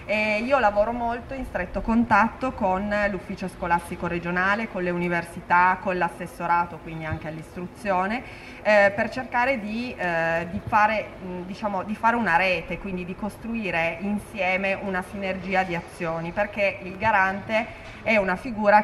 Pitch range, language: 170-205 Hz, Italian